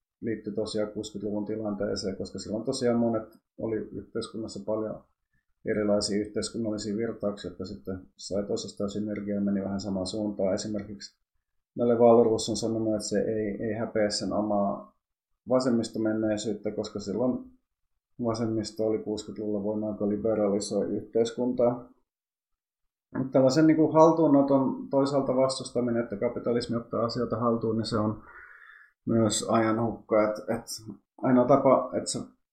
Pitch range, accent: 105-120 Hz, native